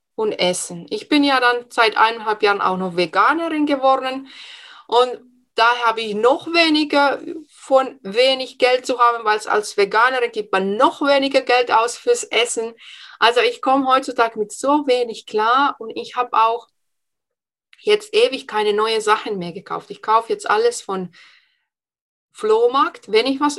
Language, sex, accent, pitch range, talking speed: German, female, German, 235-325 Hz, 160 wpm